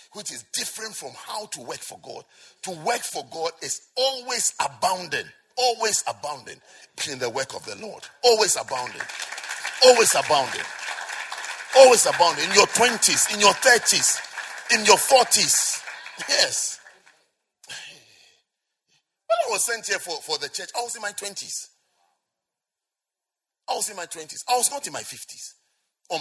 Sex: male